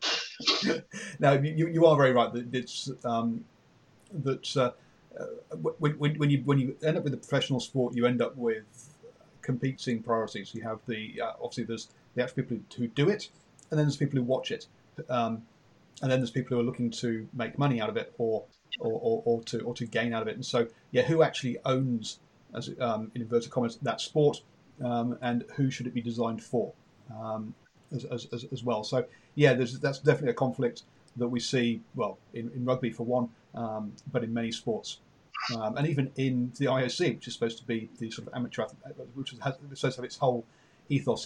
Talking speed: 210 wpm